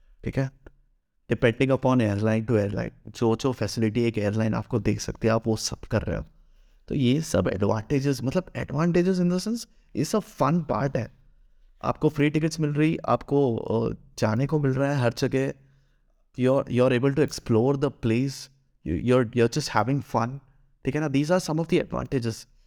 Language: Hindi